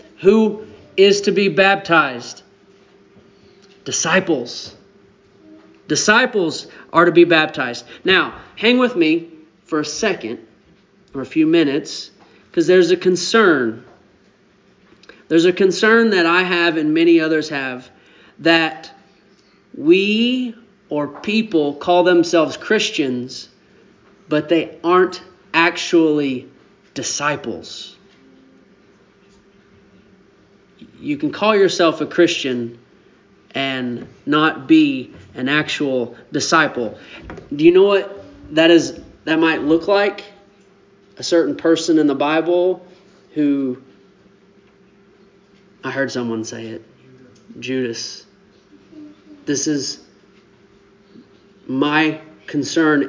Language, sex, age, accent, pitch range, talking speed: English, male, 40-59, American, 145-195 Hz, 100 wpm